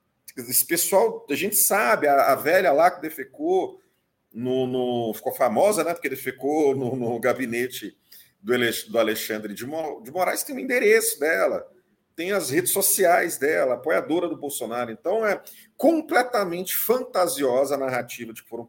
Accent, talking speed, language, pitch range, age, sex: Brazilian, 150 wpm, Portuguese, 120-180 Hz, 40-59, male